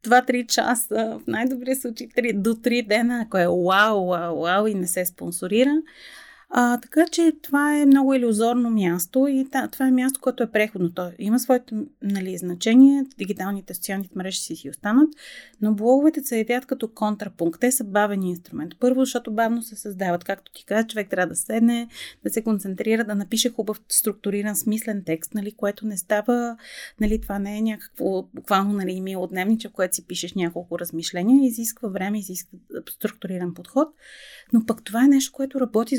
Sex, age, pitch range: female, 30-49, 195-250 Hz